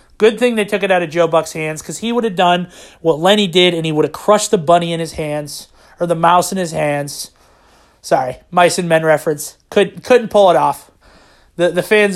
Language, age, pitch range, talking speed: English, 30-49, 170-220 Hz, 225 wpm